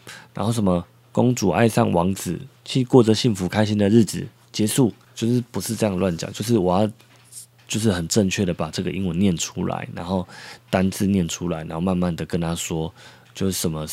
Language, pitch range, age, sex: Chinese, 90-115 Hz, 20-39, male